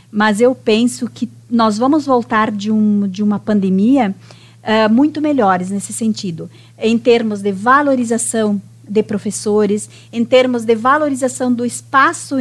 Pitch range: 205-265 Hz